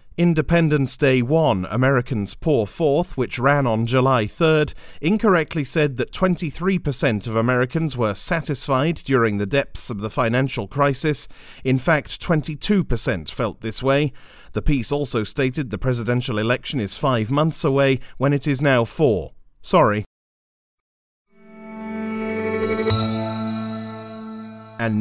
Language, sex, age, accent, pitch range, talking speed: English, male, 40-59, British, 120-155 Hz, 120 wpm